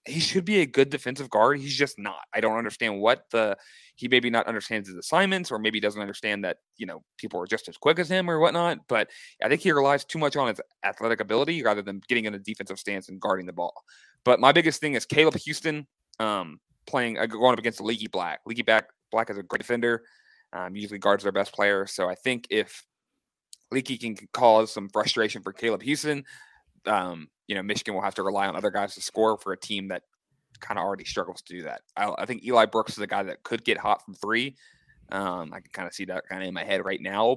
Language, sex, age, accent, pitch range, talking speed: English, male, 20-39, American, 100-135 Hz, 240 wpm